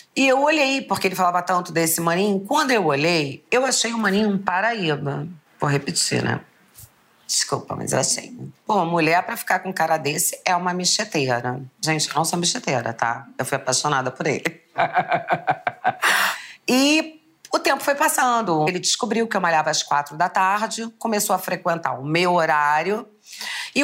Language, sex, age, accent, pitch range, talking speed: Portuguese, female, 40-59, Brazilian, 160-210 Hz, 170 wpm